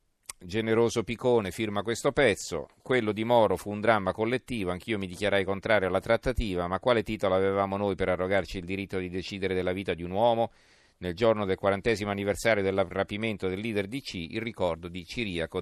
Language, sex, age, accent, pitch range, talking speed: Italian, male, 40-59, native, 95-115 Hz, 185 wpm